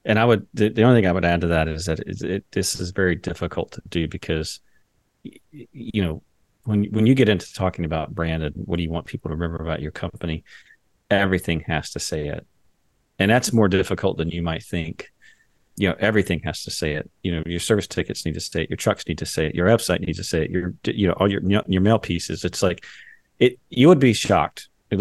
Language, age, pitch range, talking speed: English, 40-59, 80-100 Hz, 240 wpm